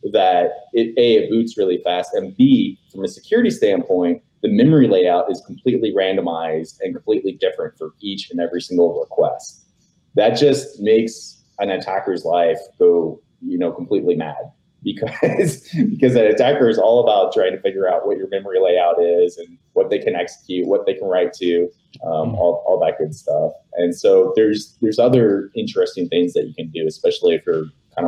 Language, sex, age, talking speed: English, male, 30-49, 185 wpm